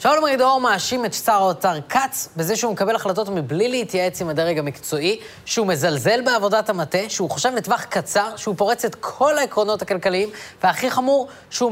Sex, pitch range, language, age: female, 175-240 Hz, Hebrew, 20-39